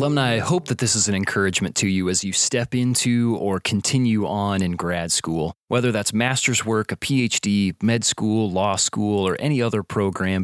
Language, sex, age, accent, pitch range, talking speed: English, male, 30-49, American, 95-115 Hz, 195 wpm